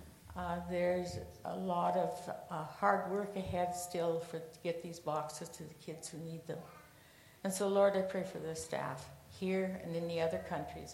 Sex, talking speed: female, 185 wpm